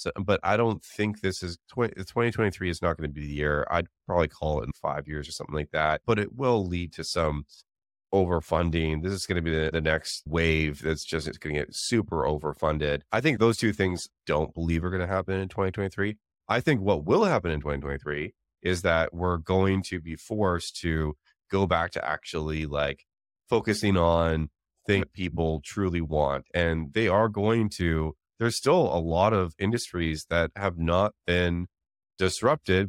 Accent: American